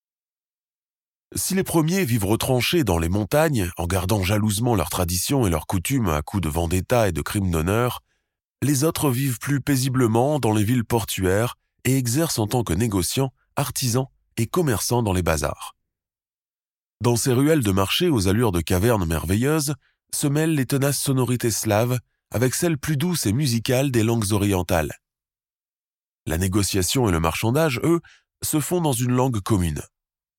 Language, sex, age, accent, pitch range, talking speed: French, male, 20-39, French, 95-140 Hz, 160 wpm